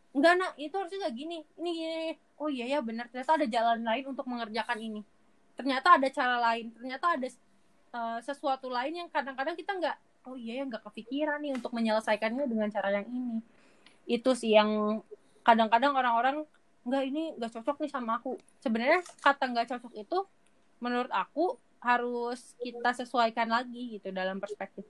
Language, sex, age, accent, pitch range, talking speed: Indonesian, female, 20-39, native, 235-310 Hz, 170 wpm